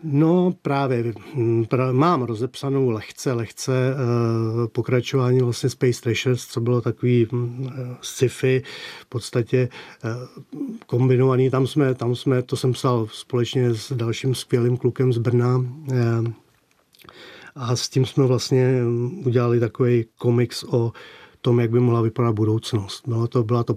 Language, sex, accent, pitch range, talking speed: Czech, male, native, 120-130 Hz, 140 wpm